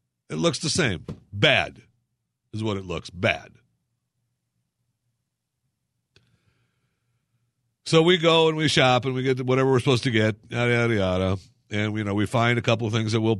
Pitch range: 115-135 Hz